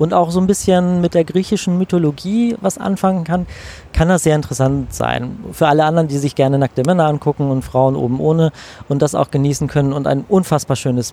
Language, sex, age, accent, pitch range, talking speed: German, male, 30-49, German, 130-170 Hz, 210 wpm